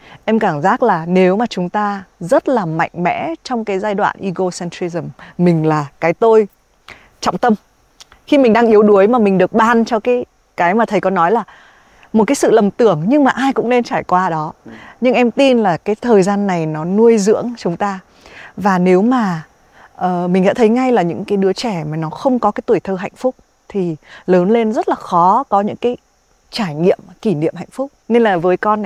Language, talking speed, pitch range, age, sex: Vietnamese, 220 wpm, 180-230 Hz, 20-39, female